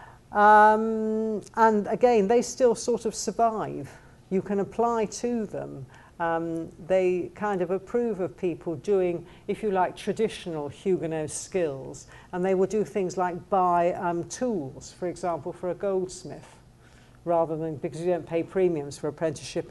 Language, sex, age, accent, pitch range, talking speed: English, female, 50-69, British, 165-205 Hz, 150 wpm